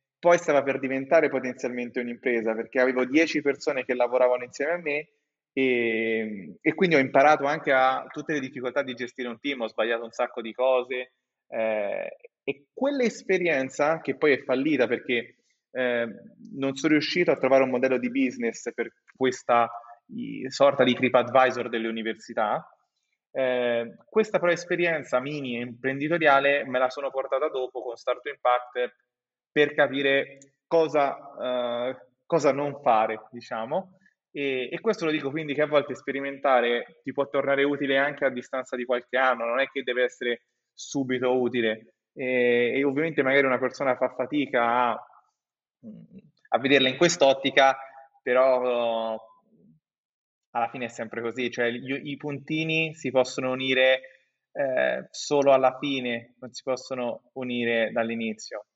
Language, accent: Italian, native